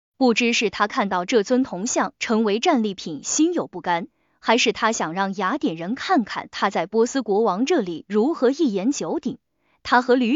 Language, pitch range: Chinese, 215-290 Hz